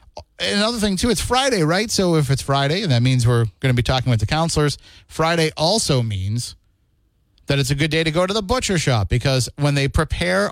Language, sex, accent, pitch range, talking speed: English, male, American, 110-150 Hz, 220 wpm